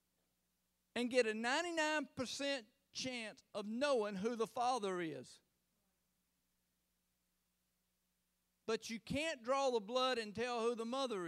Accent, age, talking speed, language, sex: American, 50-69, 115 wpm, English, male